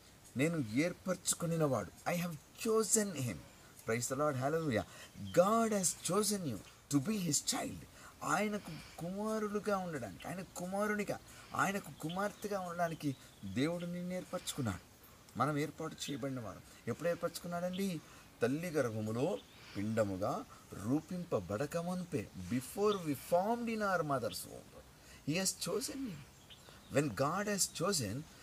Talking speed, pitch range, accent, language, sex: 125 wpm, 115-185 Hz, native, Telugu, male